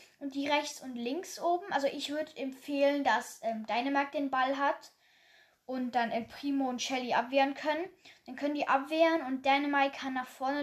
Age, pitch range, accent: 10-29, 245-310 Hz, German